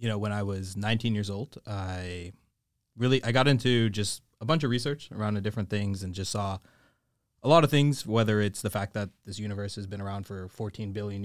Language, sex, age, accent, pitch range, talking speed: English, male, 20-39, American, 105-125 Hz, 225 wpm